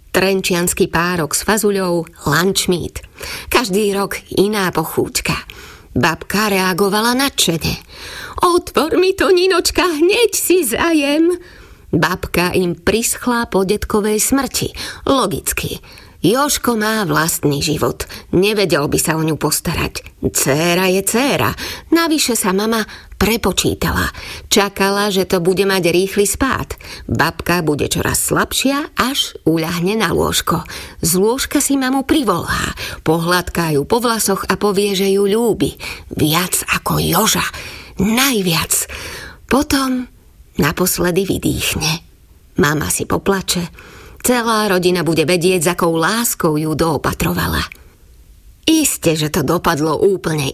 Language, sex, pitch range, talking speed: Slovak, female, 175-230 Hz, 115 wpm